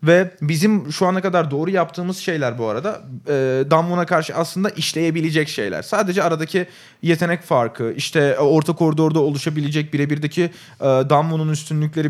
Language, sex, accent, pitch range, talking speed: Turkish, male, native, 140-175 Hz, 140 wpm